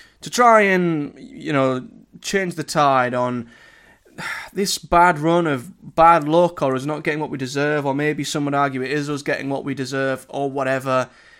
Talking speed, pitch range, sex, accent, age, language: 190 wpm, 135-160 Hz, male, British, 20-39, English